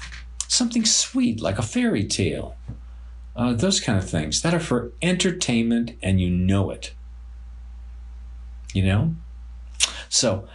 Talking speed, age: 125 wpm, 50-69